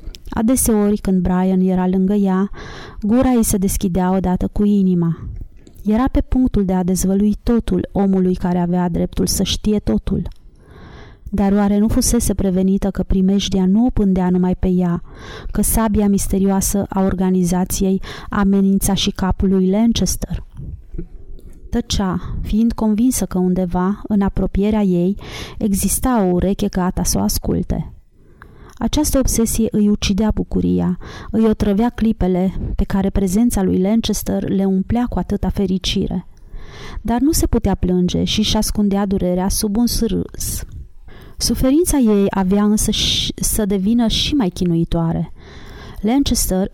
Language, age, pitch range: Romanian, 30-49, 185-225 Hz